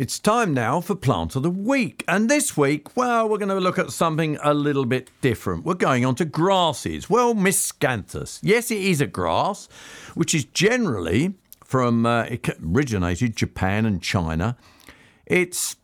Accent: British